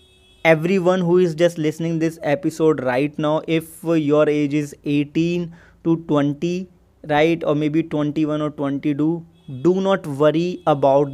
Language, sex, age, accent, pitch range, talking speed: English, male, 20-39, Indian, 150-180 Hz, 140 wpm